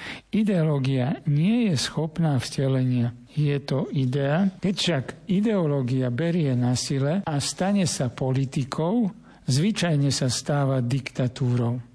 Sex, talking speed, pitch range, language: male, 110 wpm, 125-155 Hz, Slovak